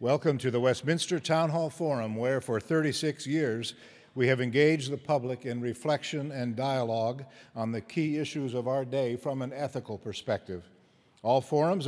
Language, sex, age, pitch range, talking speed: English, male, 50-69, 125-150 Hz, 165 wpm